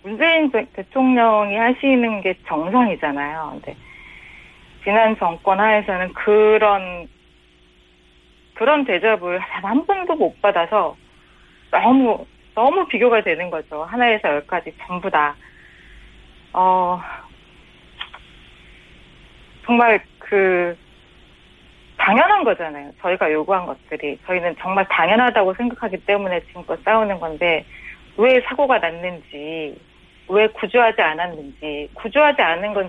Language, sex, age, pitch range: Korean, female, 40-59, 160-235 Hz